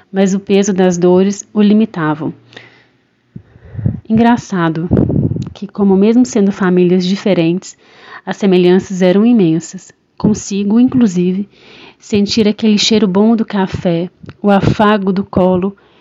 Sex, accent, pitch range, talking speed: female, Brazilian, 185-220 Hz, 110 wpm